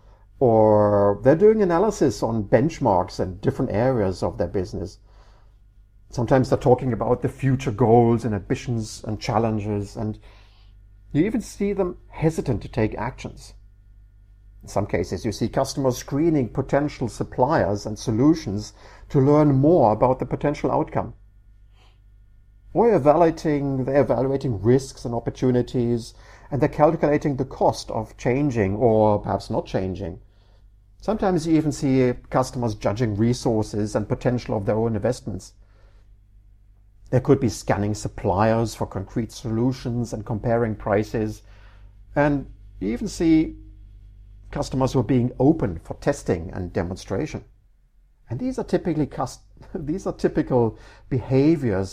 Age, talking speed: 50-69, 125 wpm